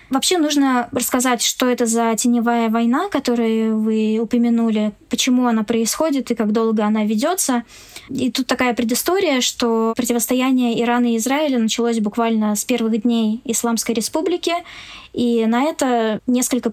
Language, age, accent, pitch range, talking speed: Russian, 20-39, native, 225-260 Hz, 140 wpm